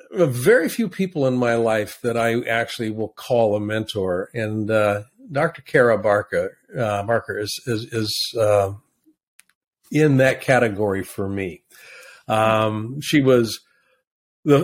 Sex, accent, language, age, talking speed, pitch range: male, American, English, 50-69, 135 wpm, 105-135 Hz